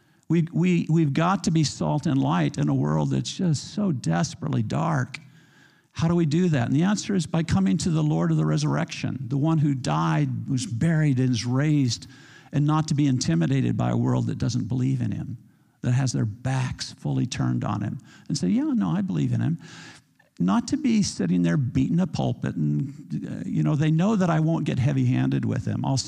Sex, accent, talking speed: male, American, 215 wpm